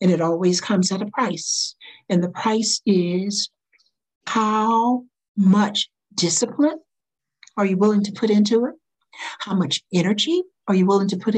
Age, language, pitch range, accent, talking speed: 60-79, English, 180-235 Hz, American, 155 wpm